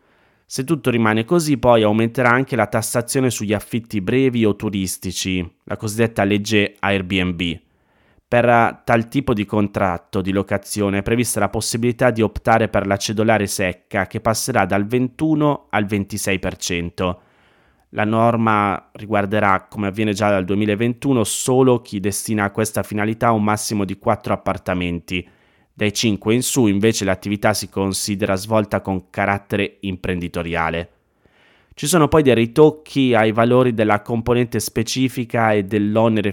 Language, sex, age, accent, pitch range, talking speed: Italian, male, 20-39, native, 100-120 Hz, 140 wpm